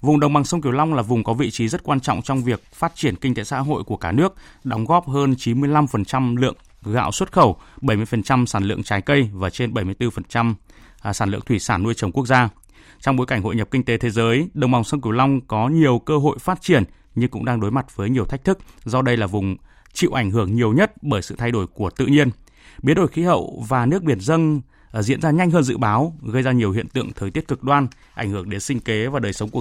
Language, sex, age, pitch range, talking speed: Vietnamese, male, 20-39, 105-140 Hz, 255 wpm